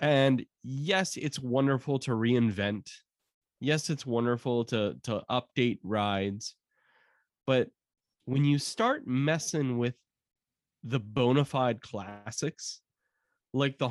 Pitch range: 115-150 Hz